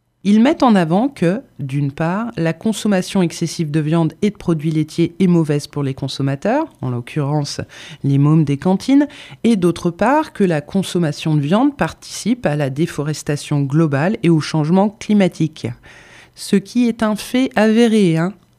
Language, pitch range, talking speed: French, 150-205 Hz, 165 wpm